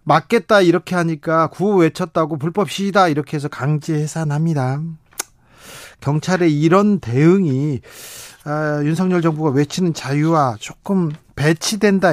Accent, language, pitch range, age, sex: native, Korean, 155-225 Hz, 40-59, male